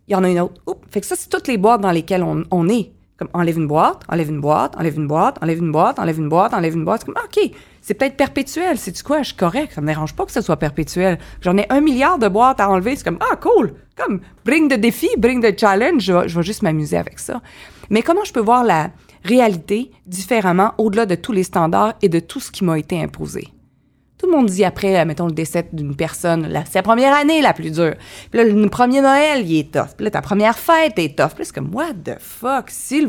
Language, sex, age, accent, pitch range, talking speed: French, female, 30-49, Canadian, 165-245 Hz, 275 wpm